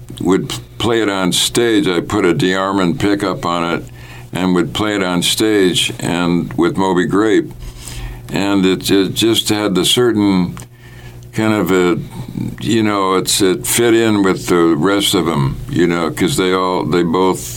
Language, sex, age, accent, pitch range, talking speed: English, male, 60-79, American, 85-105 Hz, 170 wpm